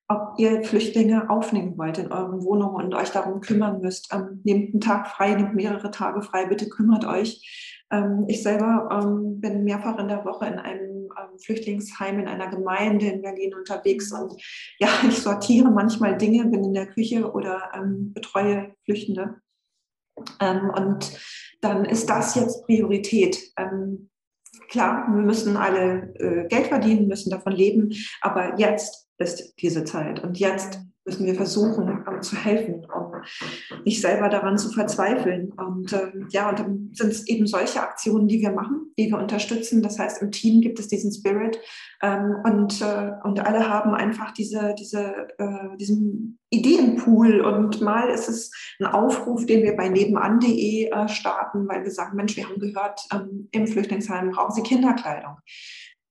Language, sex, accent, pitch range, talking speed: German, female, German, 195-220 Hz, 165 wpm